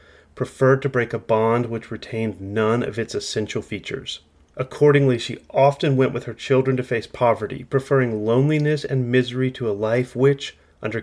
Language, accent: English, American